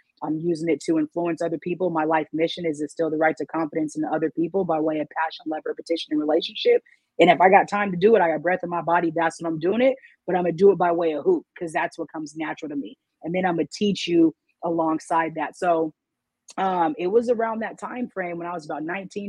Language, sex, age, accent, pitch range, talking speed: English, female, 30-49, American, 160-200 Hz, 265 wpm